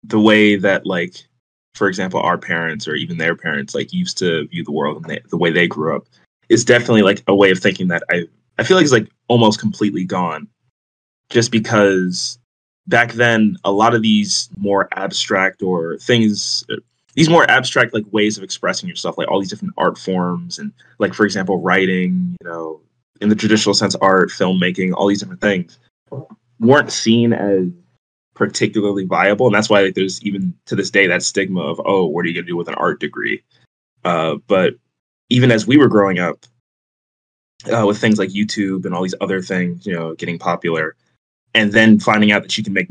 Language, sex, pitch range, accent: English, male, 90-110 Hz, American